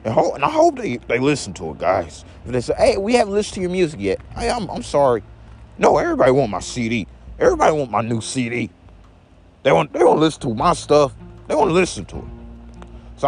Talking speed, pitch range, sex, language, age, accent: 225 wpm, 90-145 Hz, male, English, 30-49, American